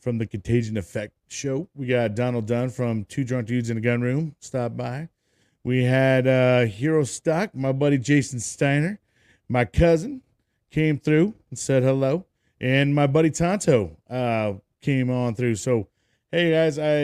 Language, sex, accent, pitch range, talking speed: English, male, American, 120-150 Hz, 165 wpm